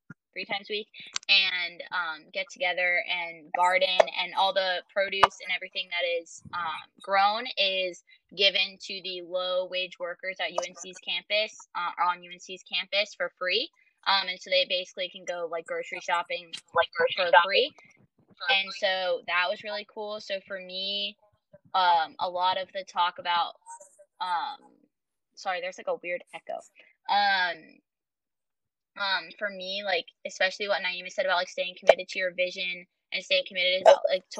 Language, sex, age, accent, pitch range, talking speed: English, female, 20-39, American, 180-220 Hz, 165 wpm